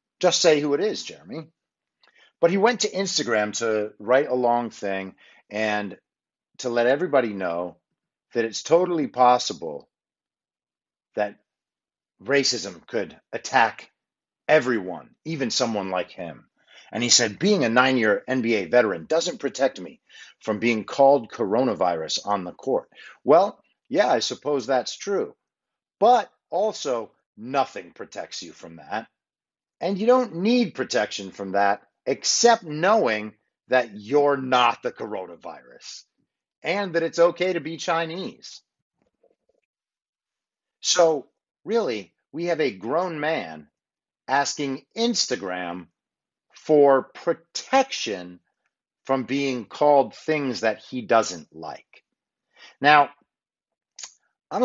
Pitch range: 115-165 Hz